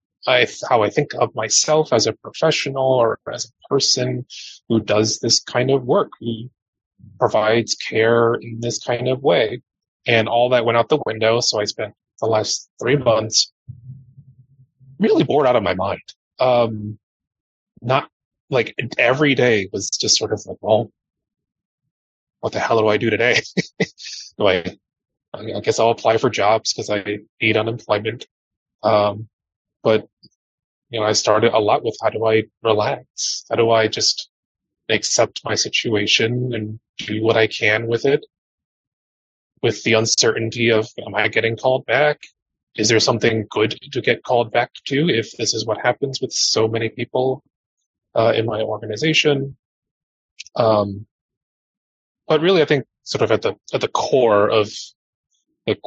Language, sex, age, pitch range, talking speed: English, male, 20-39, 110-130 Hz, 160 wpm